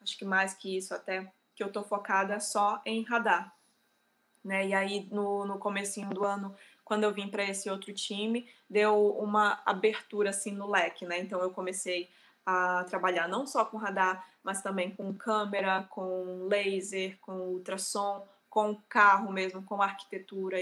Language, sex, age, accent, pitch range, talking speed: Portuguese, female, 20-39, Brazilian, 190-210 Hz, 165 wpm